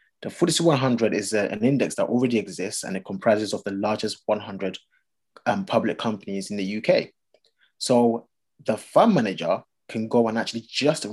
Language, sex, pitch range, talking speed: English, male, 105-135 Hz, 175 wpm